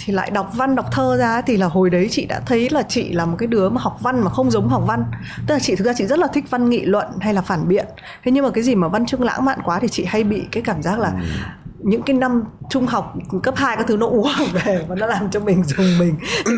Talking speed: 300 wpm